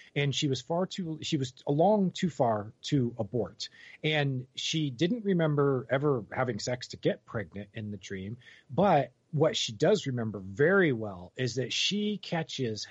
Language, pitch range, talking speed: English, 125-160 Hz, 165 wpm